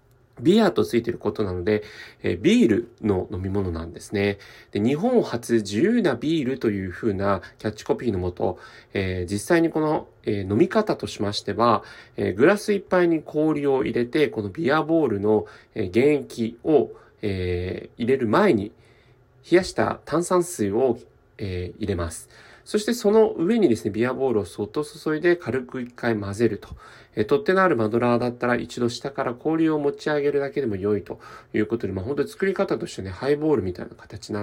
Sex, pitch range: male, 105-160 Hz